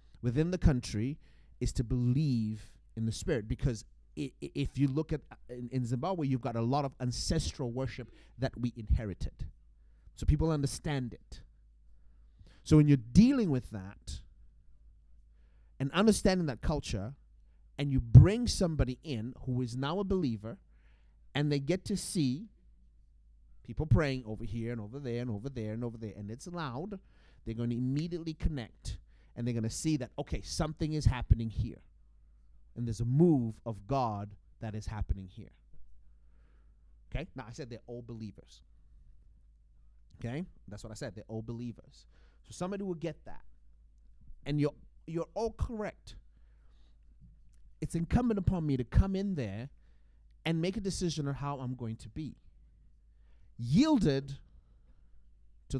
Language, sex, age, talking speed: English, male, 30-49, 155 wpm